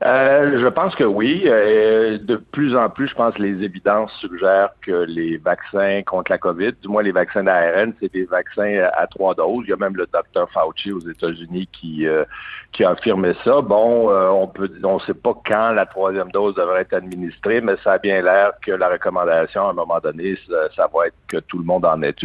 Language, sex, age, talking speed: French, male, 60-79, 220 wpm